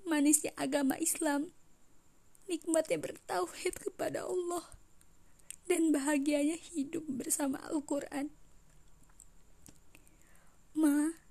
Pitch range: 260-310 Hz